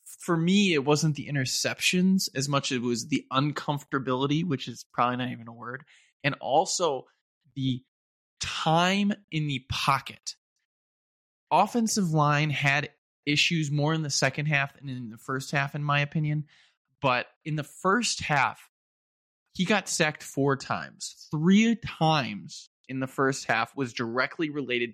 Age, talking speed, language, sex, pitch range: 20-39, 150 wpm, English, male, 130-175 Hz